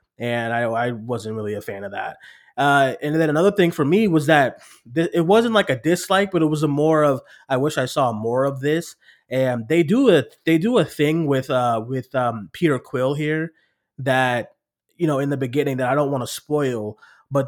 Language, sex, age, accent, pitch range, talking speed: English, male, 20-39, American, 120-145 Hz, 225 wpm